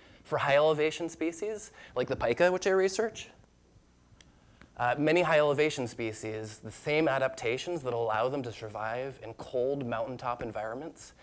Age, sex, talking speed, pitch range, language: 20-39, male, 135 wpm, 110-150 Hz, English